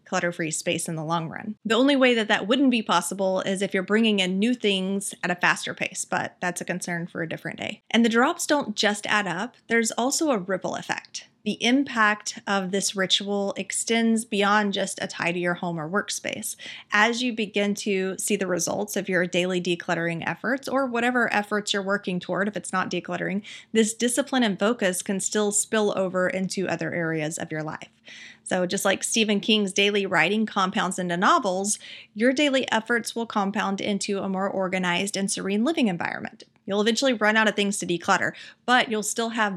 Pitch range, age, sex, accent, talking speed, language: 180-215 Hz, 30-49, female, American, 200 wpm, English